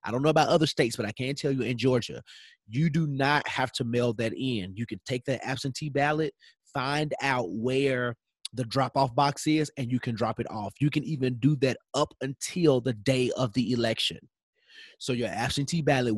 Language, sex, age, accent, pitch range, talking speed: English, male, 30-49, American, 110-140 Hz, 210 wpm